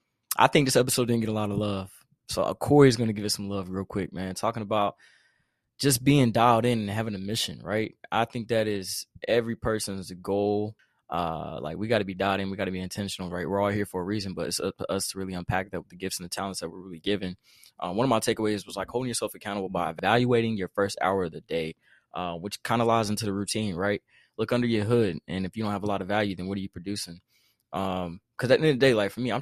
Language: English